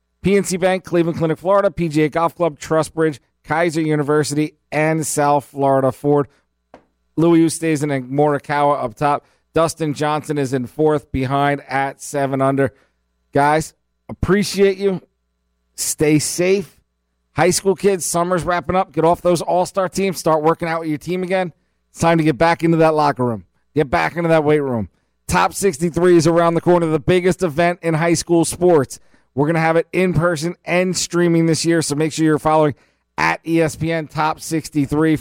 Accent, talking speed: American, 175 wpm